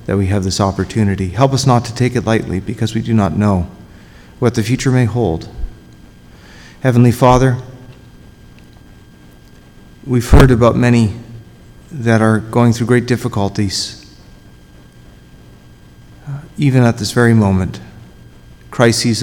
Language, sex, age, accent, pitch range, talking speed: English, male, 40-59, American, 100-125 Hz, 130 wpm